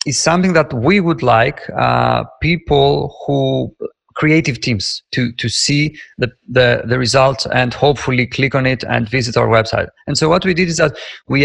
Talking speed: 185 wpm